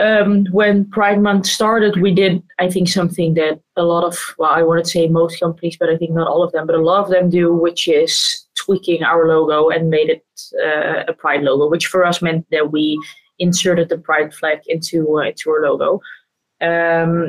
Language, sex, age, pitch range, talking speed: English, female, 20-39, 170-190 Hz, 215 wpm